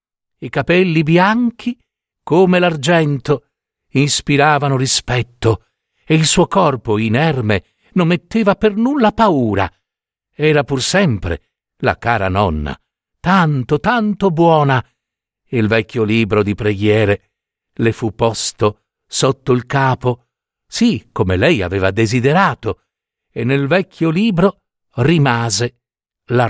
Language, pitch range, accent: Italian, 115-180 Hz, native